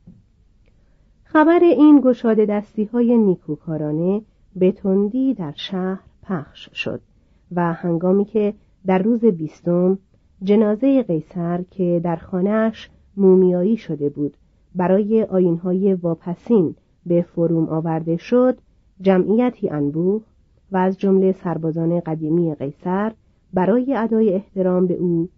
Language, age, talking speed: Persian, 40-59, 105 wpm